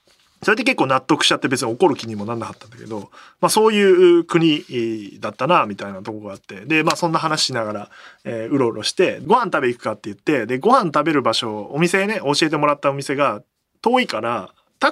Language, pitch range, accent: Japanese, 125-200 Hz, native